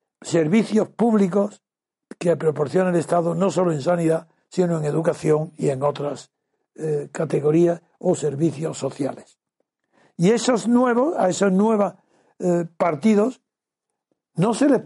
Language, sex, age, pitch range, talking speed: Spanish, male, 60-79, 165-215 Hz, 130 wpm